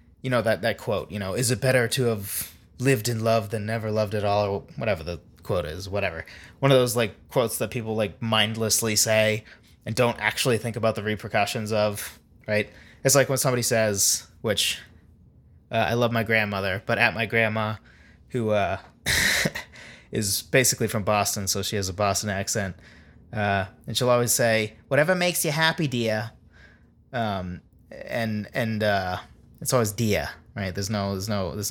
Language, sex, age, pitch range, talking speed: English, male, 20-39, 100-135 Hz, 175 wpm